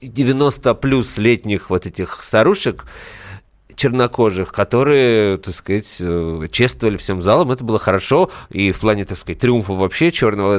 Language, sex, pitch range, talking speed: Russian, male, 95-125 Hz, 135 wpm